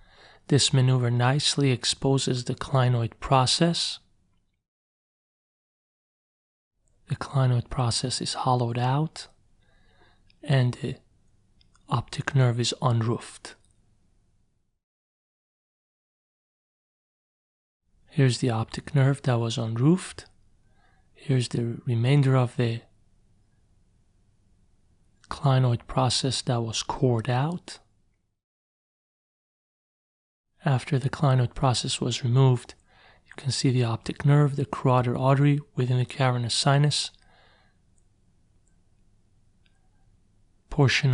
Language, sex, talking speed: English, male, 85 wpm